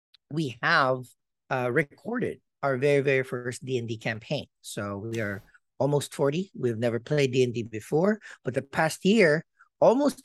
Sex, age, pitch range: male, 50-69, 120-150 Hz